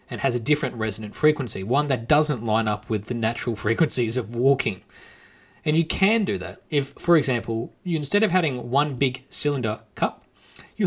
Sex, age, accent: male, 30-49, Australian